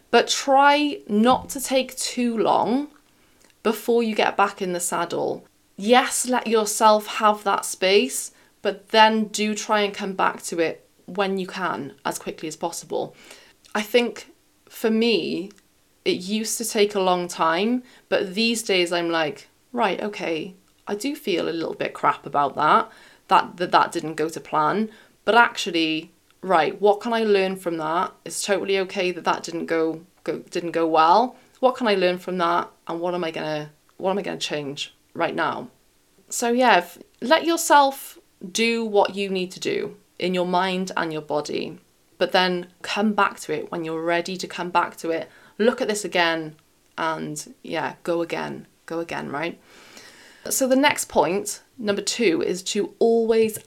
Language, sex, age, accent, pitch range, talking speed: English, female, 20-39, British, 175-230 Hz, 180 wpm